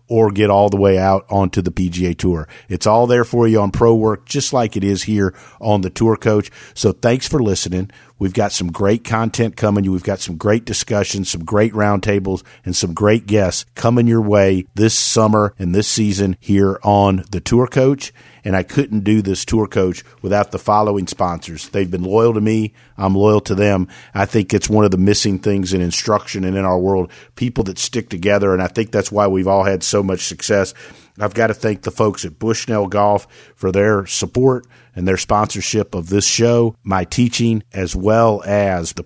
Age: 50-69